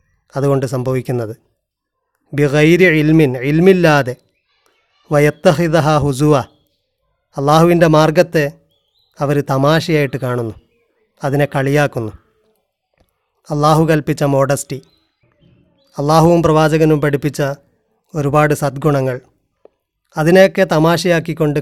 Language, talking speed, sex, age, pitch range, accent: Malayalam, 65 wpm, male, 30-49, 140-160 Hz, native